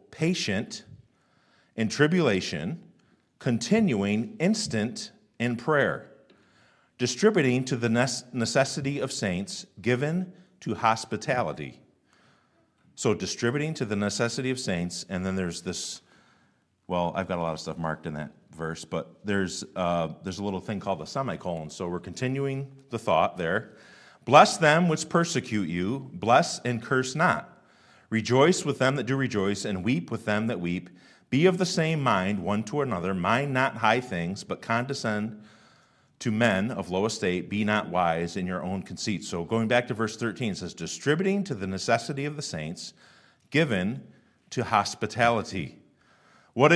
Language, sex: English, male